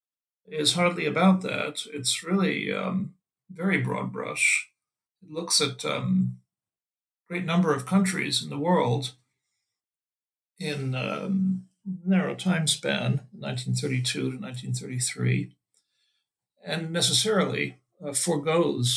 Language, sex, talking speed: English, male, 95 wpm